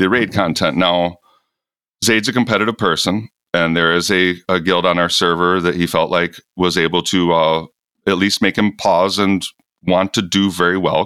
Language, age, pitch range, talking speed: English, 40-59, 80-95 Hz, 195 wpm